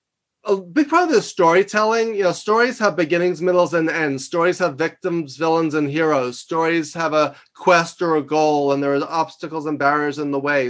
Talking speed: 200 wpm